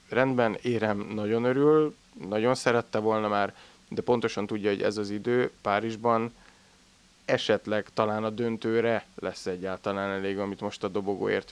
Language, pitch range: Hungarian, 100-115 Hz